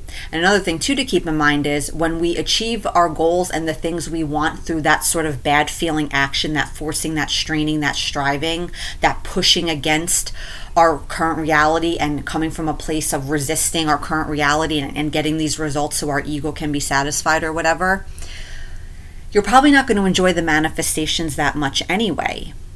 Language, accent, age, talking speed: English, American, 30-49, 185 wpm